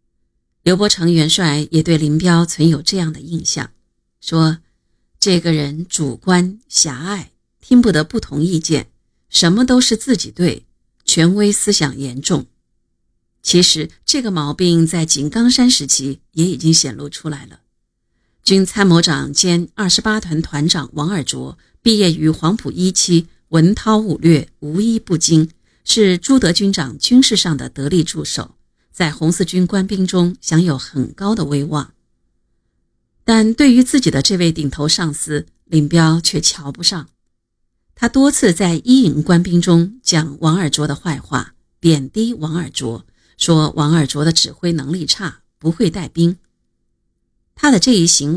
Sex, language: female, Chinese